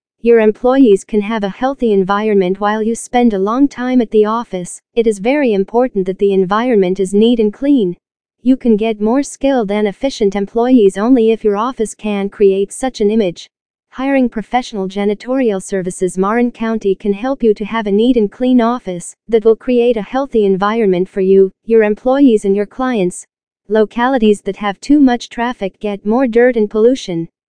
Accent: American